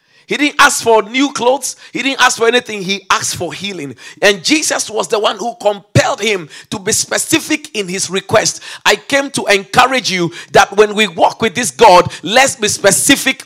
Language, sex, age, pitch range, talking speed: English, male, 40-59, 155-235 Hz, 195 wpm